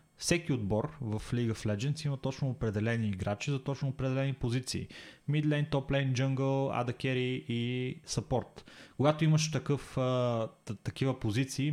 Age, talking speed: 20-39, 145 wpm